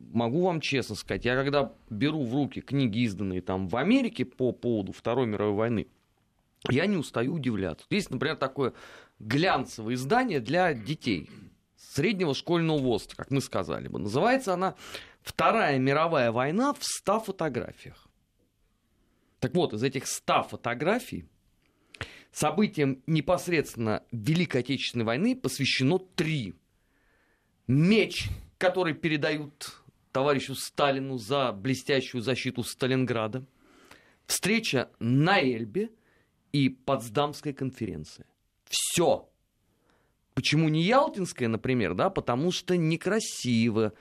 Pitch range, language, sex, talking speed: 115-155 Hz, Russian, male, 110 wpm